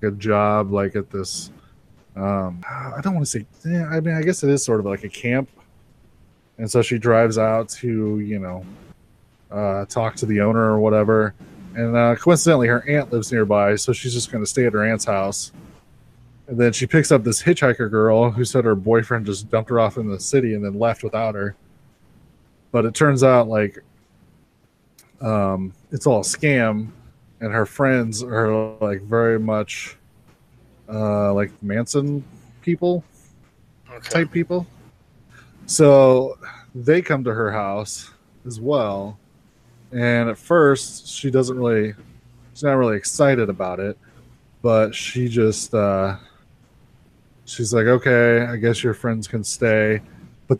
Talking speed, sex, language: 160 wpm, male, English